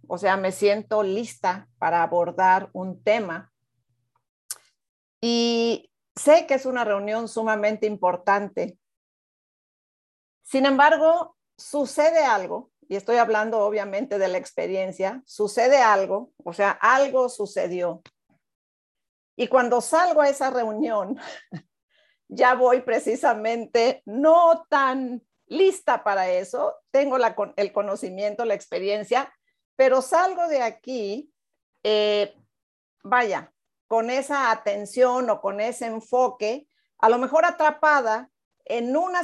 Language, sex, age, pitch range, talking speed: Spanish, female, 50-69, 210-300 Hz, 110 wpm